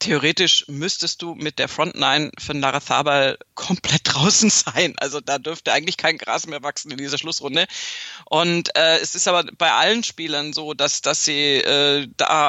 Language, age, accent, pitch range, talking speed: German, 40-59, German, 150-180 Hz, 175 wpm